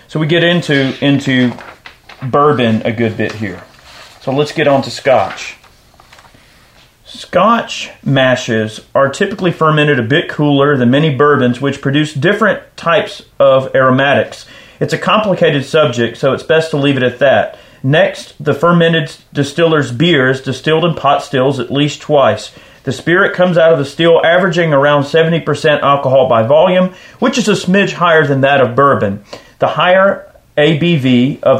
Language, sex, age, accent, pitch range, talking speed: English, male, 40-59, American, 130-160 Hz, 160 wpm